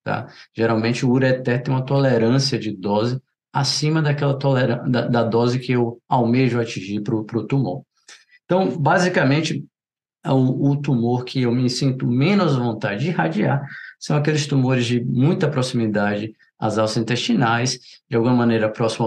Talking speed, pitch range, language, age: 150 wpm, 115-140 Hz, Portuguese, 20-39